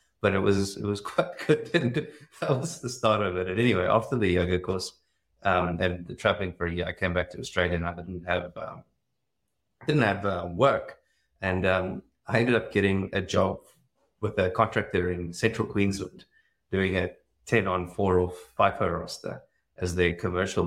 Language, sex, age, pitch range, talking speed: English, male, 30-49, 90-105 Hz, 190 wpm